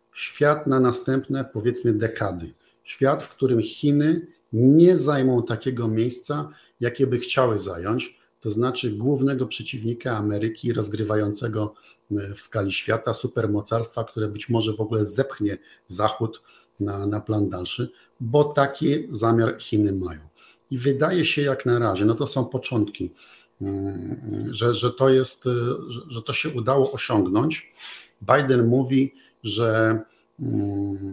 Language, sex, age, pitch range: Polish, male, 50-69, 110-130 Hz